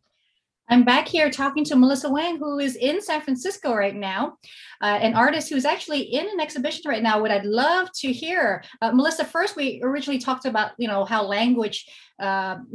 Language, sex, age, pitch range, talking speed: English, female, 30-49, 200-250 Hz, 195 wpm